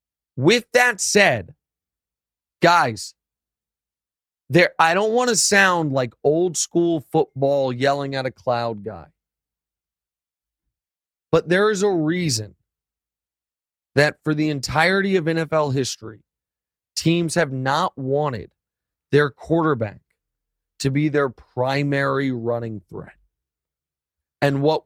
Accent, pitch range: American, 115-175 Hz